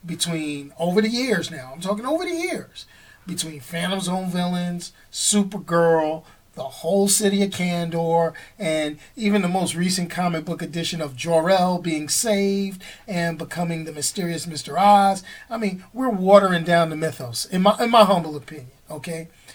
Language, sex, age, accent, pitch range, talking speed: English, male, 40-59, American, 165-215 Hz, 160 wpm